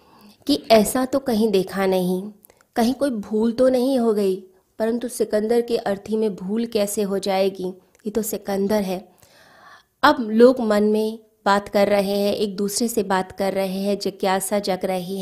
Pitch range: 195-225 Hz